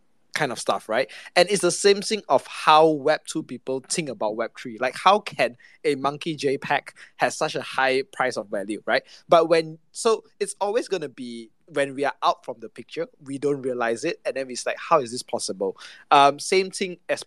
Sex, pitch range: male, 135-170 Hz